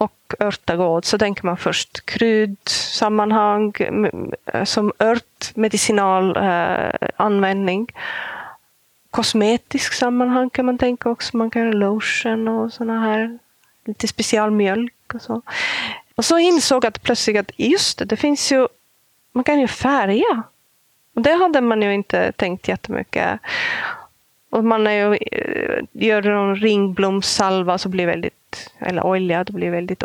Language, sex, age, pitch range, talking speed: Swedish, female, 30-49, 195-240 Hz, 145 wpm